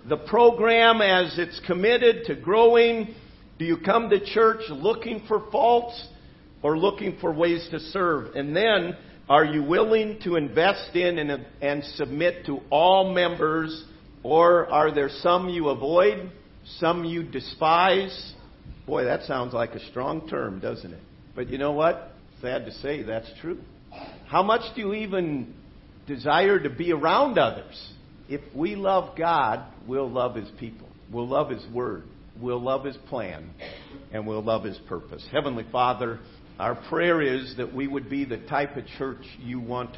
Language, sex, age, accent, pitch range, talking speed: English, male, 50-69, American, 125-170 Hz, 160 wpm